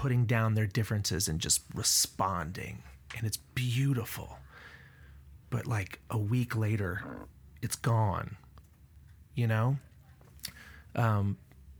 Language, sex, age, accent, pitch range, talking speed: English, male, 30-49, American, 95-125 Hz, 100 wpm